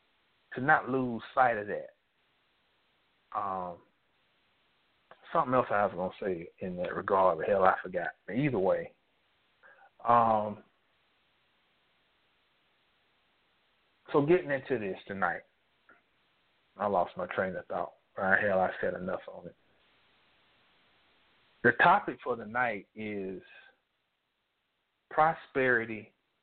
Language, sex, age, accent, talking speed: English, male, 30-49, American, 105 wpm